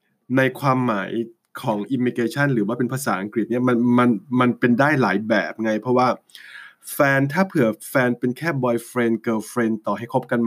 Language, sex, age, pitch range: Thai, male, 20-39, 115-130 Hz